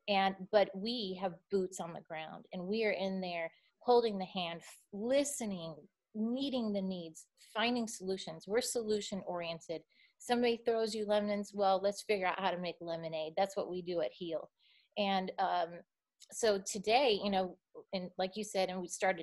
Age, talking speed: 30-49, 180 wpm